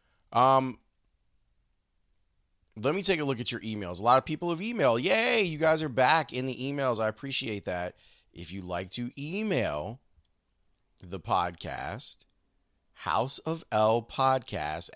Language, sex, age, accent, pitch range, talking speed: English, male, 30-49, American, 95-125 Hz, 135 wpm